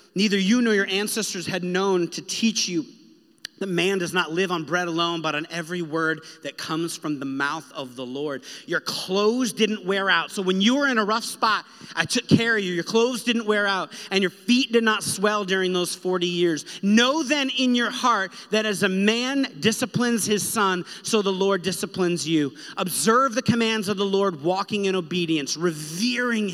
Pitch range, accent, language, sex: 175-225 Hz, American, English, male